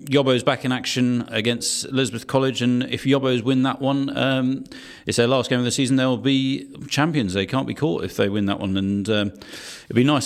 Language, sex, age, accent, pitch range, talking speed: English, male, 40-59, British, 105-130 Hz, 220 wpm